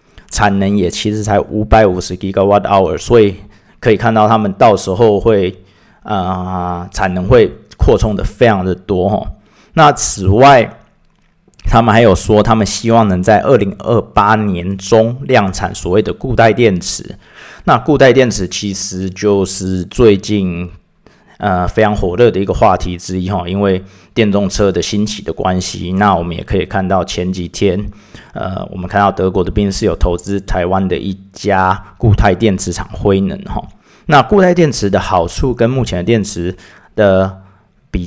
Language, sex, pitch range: Chinese, male, 95-105 Hz